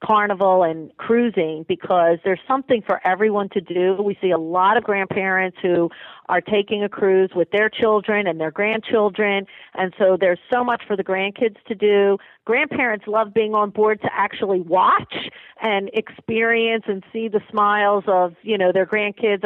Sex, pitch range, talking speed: female, 190-220 Hz, 175 wpm